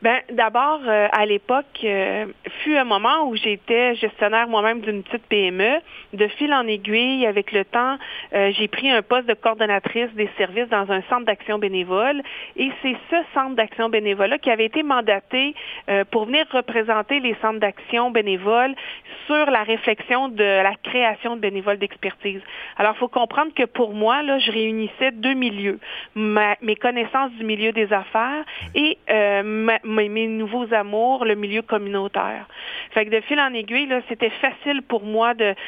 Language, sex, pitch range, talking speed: French, female, 210-245 Hz, 175 wpm